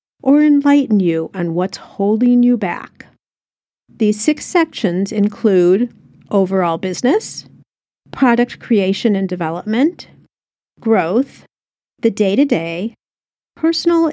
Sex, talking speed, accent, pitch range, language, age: female, 95 wpm, American, 195-260 Hz, English, 50-69